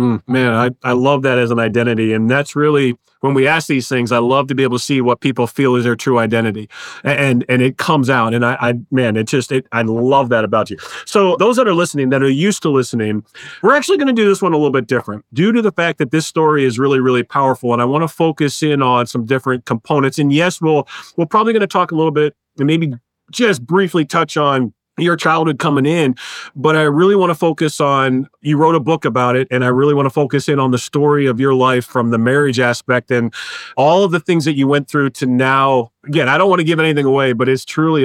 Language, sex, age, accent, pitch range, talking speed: English, male, 40-59, American, 125-155 Hz, 255 wpm